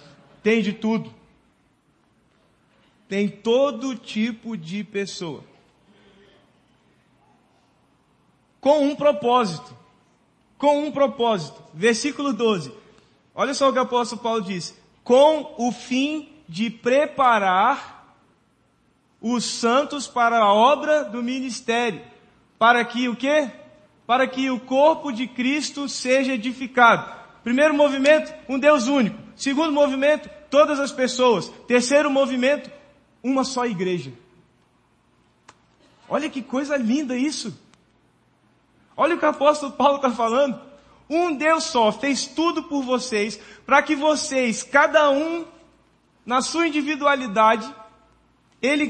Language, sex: Portuguese, male